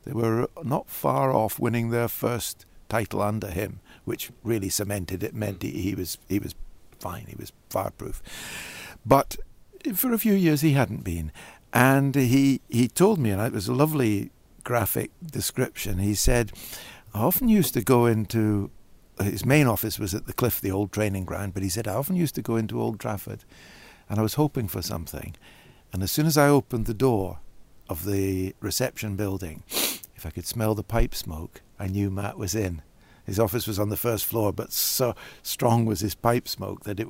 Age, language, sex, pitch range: 60-79, English, male, 95-120 Hz